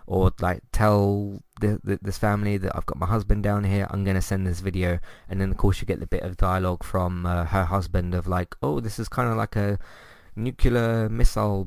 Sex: male